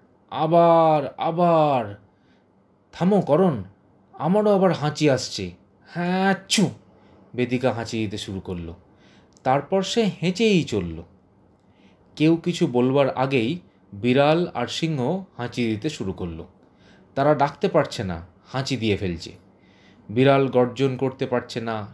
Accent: Indian